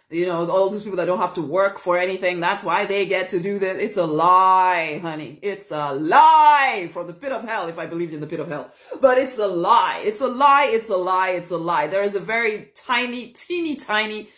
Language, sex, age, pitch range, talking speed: English, female, 30-49, 185-265 Hz, 245 wpm